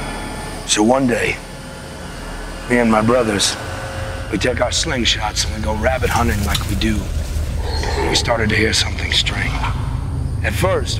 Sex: male